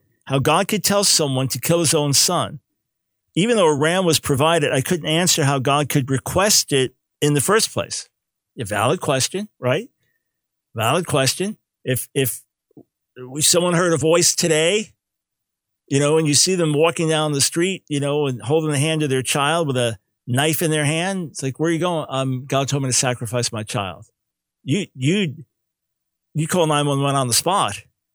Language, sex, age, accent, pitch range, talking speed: English, male, 50-69, American, 130-160 Hz, 195 wpm